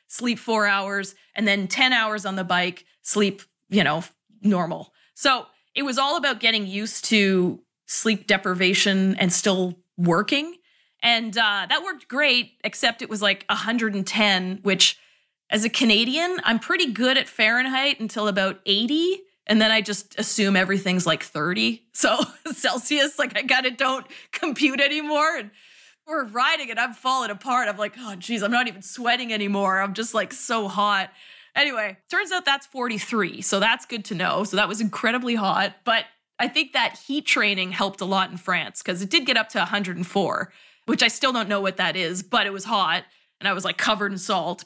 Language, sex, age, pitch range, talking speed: English, female, 30-49, 195-255 Hz, 185 wpm